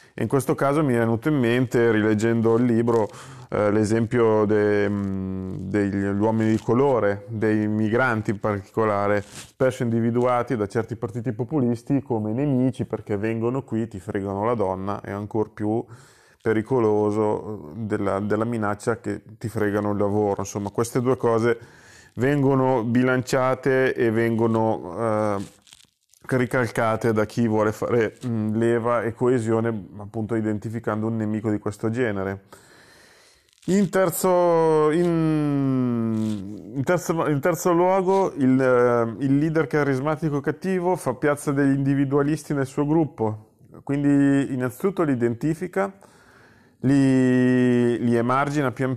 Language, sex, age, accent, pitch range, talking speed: Italian, male, 30-49, native, 110-140 Hz, 120 wpm